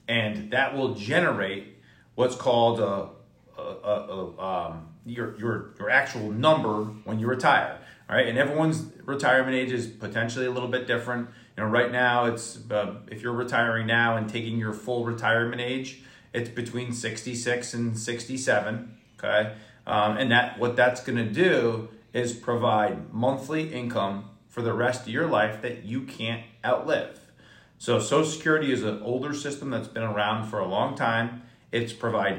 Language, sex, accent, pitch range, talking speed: English, male, American, 115-140 Hz, 170 wpm